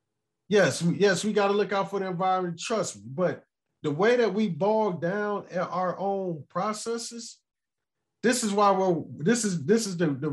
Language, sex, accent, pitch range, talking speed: English, male, American, 170-210 Hz, 185 wpm